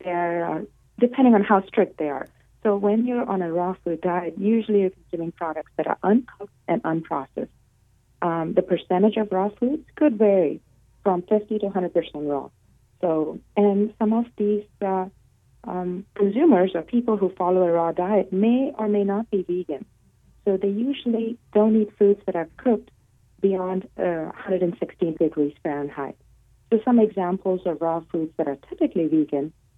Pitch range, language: 150-200 Hz, English